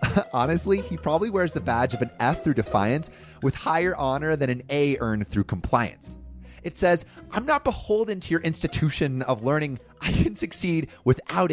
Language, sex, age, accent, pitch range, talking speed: English, male, 30-49, American, 110-175 Hz, 175 wpm